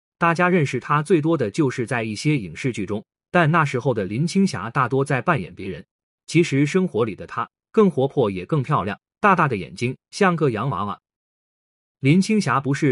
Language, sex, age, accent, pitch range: Chinese, male, 30-49, native, 125-170 Hz